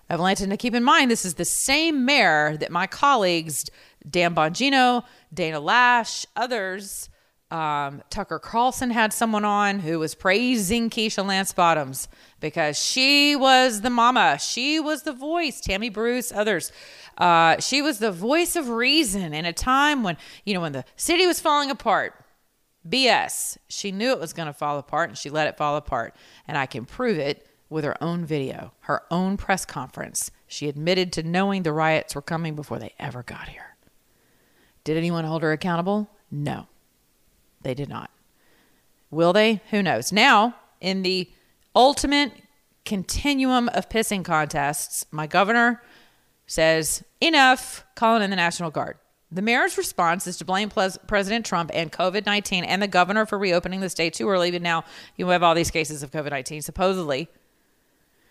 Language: English